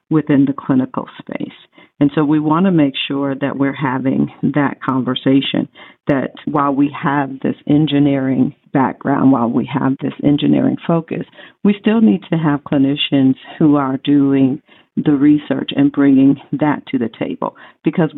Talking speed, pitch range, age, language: 150 wpm, 140-155 Hz, 50-69, English